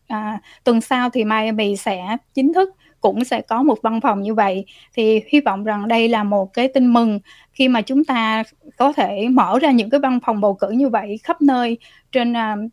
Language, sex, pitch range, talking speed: Vietnamese, female, 210-260 Hz, 210 wpm